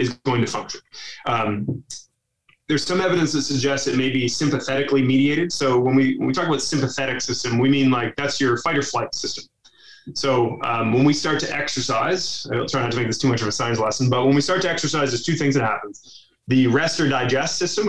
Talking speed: 230 wpm